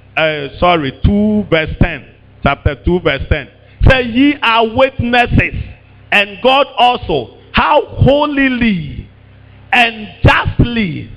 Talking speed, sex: 115 wpm, male